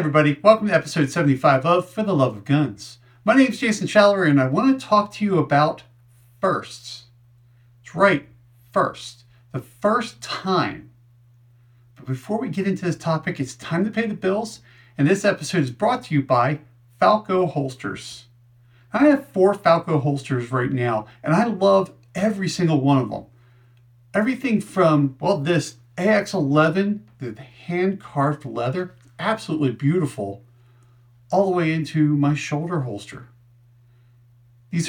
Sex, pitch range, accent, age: male, 120-170 Hz, American, 40-59